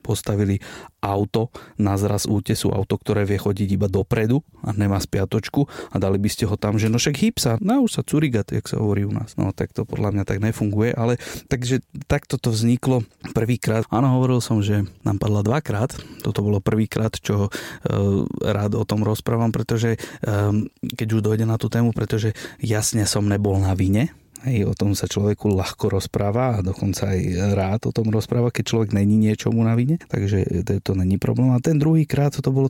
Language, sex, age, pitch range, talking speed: Slovak, male, 30-49, 100-120 Hz, 195 wpm